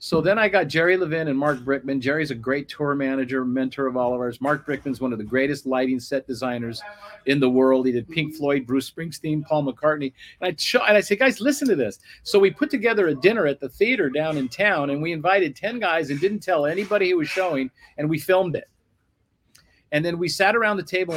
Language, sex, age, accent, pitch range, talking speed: English, male, 50-69, American, 140-185 Hz, 230 wpm